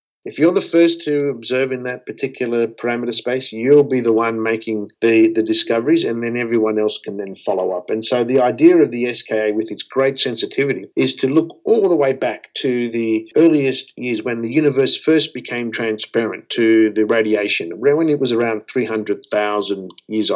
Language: English